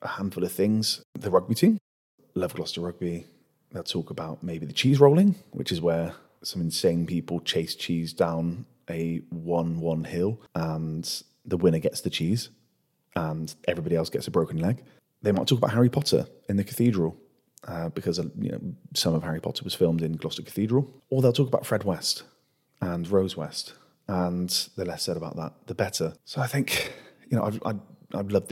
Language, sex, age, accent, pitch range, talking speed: English, male, 30-49, British, 85-100 Hz, 185 wpm